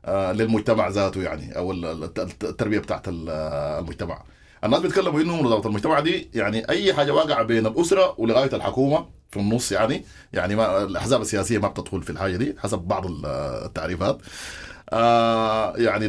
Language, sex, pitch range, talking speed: English, male, 100-130 Hz, 145 wpm